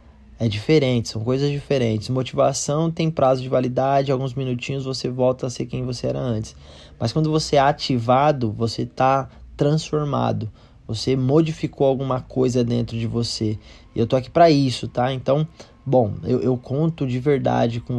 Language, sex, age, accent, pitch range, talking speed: Portuguese, male, 20-39, Brazilian, 115-140 Hz, 165 wpm